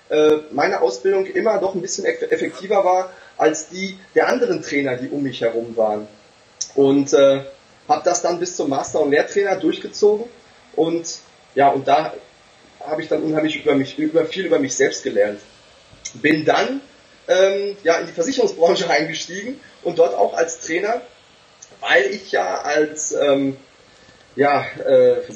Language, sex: German, male